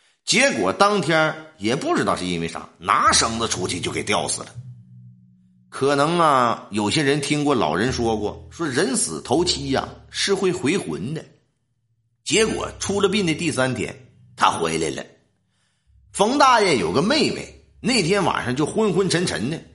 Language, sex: Chinese, male